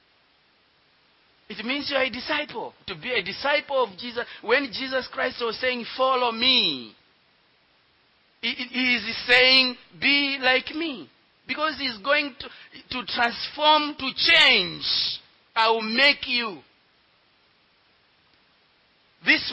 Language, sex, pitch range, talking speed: English, male, 240-275 Hz, 115 wpm